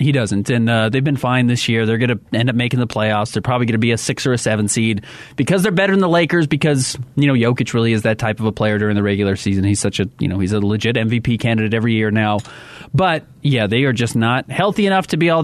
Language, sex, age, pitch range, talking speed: English, male, 30-49, 105-140 Hz, 285 wpm